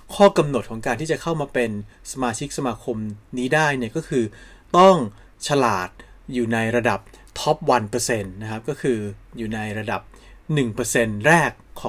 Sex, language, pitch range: male, Thai, 115-145 Hz